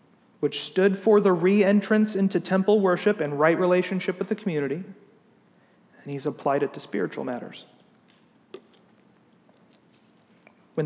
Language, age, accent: English, 40-59, American